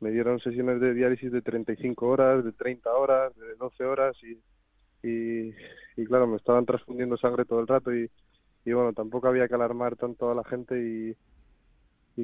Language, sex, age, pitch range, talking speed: Spanish, male, 20-39, 115-125 Hz, 185 wpm